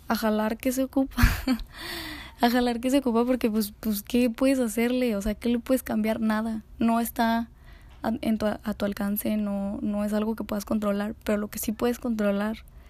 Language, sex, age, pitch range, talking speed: Spanish, female, 10-29, 215-240 Hz, 205 wpm